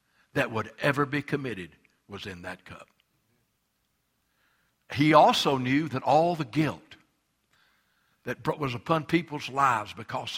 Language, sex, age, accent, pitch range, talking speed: English, male, 60-79, American, 115-155 Hz, 125 wpm